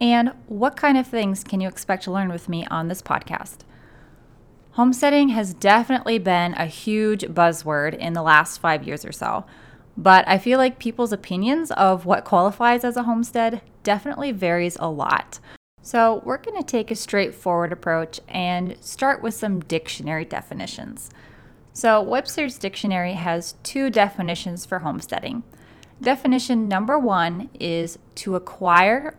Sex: female